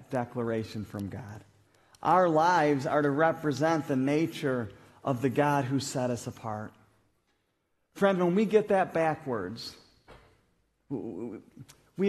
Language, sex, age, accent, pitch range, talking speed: English, male, 40-59, American, 140-210 Hz, 120 wpm